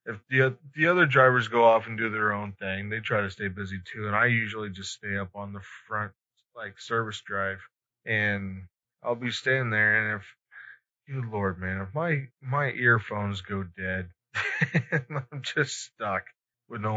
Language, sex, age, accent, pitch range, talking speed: English, male, 20-39, American, 100-120 Hz, 185 wpm